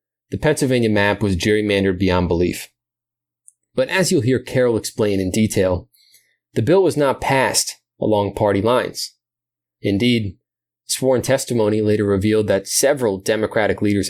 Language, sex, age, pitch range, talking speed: English, male, 20-39, 90-115 Hz, 135 wpm